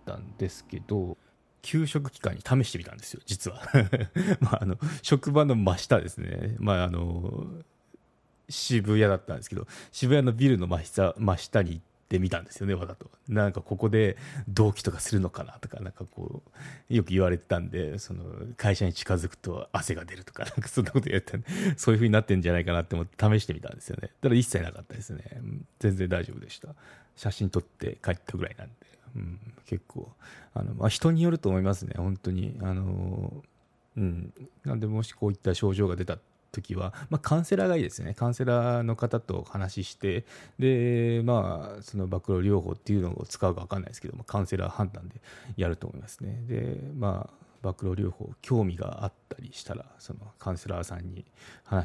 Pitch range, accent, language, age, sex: 95-125 Hz, native, Japanese, 40-59, male